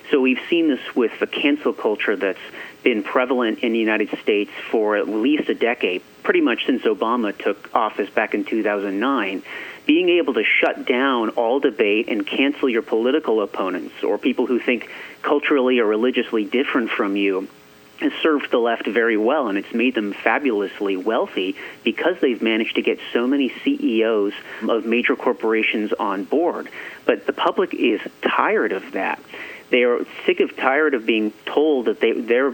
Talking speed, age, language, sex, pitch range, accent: 175 wpm, 40-59, English, male, 110-150 Hz, American